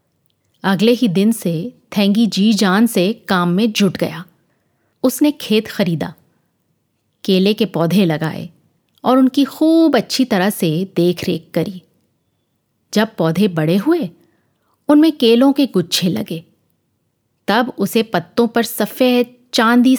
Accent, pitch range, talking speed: native, 175-235 Hz, 130 wpm